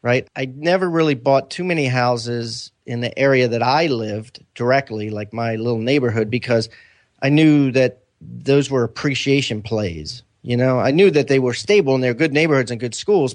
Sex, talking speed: male, 190 wpm